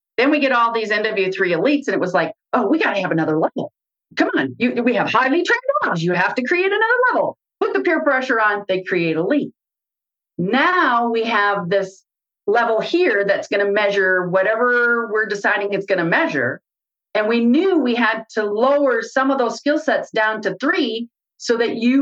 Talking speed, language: 205 wpm, English